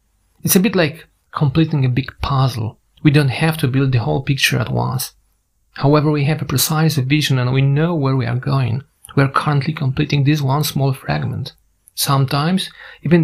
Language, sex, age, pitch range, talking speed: Polish, male, 40-59, 130-150 Hz, 185 wpm